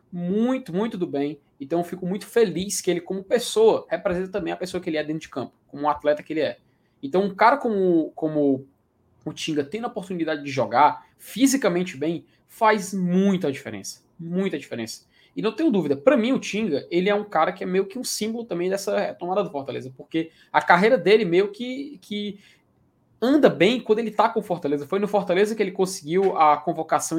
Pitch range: 155-205 Hz